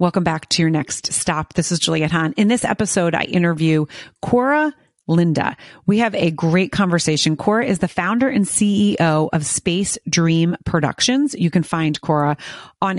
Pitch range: 150-180 Hz